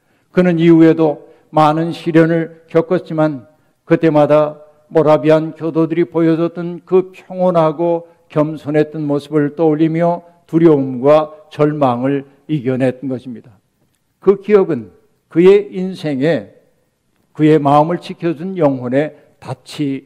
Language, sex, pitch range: Korean, male, 140-170 Hz